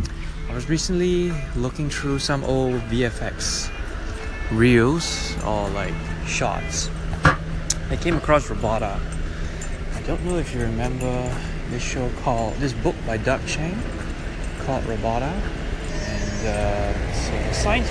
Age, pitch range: 20-39, 85-125 Hz